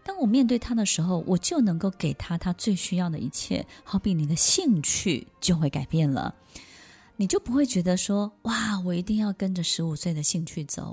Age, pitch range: 20-39, 160-225 Hz